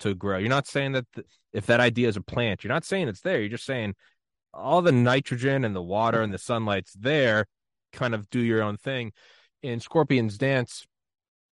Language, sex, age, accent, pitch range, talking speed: English, male, 20-39, American, 100-130 Hz, 205 wpm